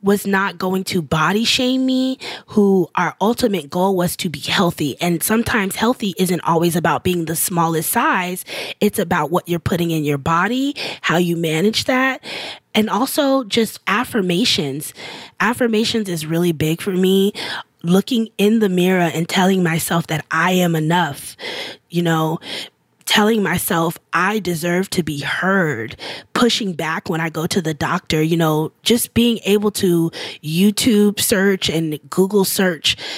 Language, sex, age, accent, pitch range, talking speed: English, female, 20-39, American, 165-210 Hz, 155 wpm